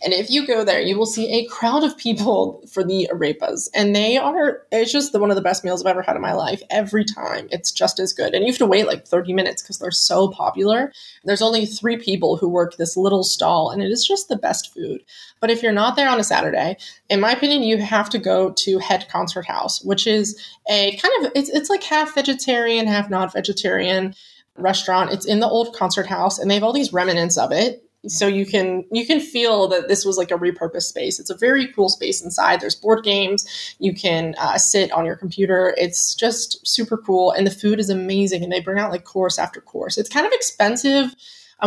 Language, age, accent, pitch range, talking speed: English, 20-39, American, 190-235 Hz, 235 wpm